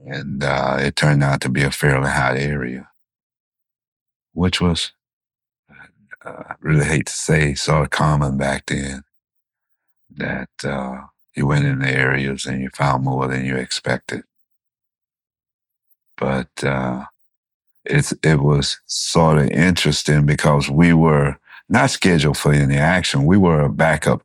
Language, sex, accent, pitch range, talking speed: English, male, American, 70-80 Hz, 145 wpm